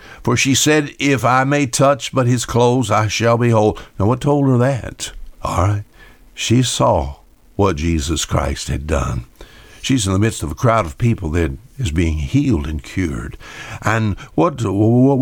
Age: 60-79